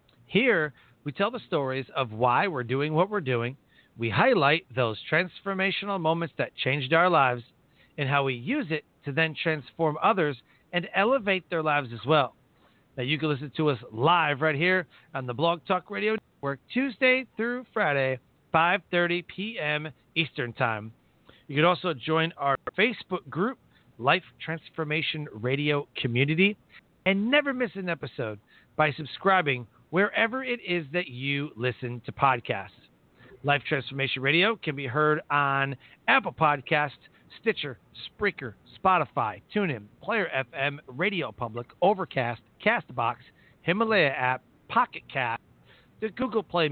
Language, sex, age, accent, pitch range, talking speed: English, male, 40-59, American, 135-185 Hz, 140 wpm